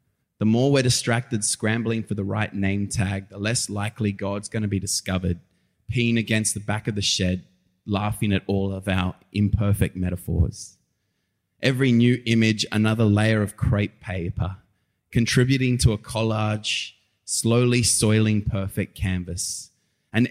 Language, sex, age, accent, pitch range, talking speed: English, male, 20-39, Australian, 100-120 Hz, 145 wpm